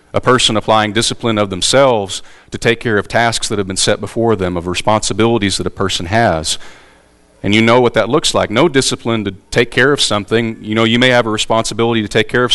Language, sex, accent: English, male, American